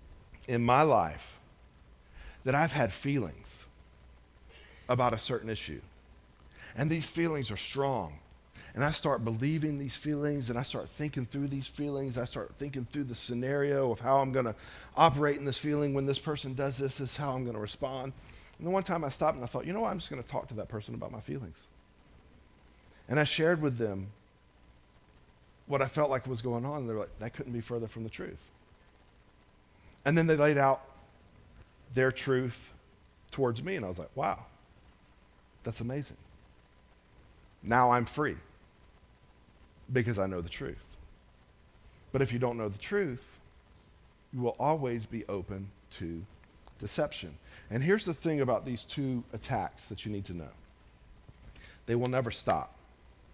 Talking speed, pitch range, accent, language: 175 wpm, 85-140 Hz, American, English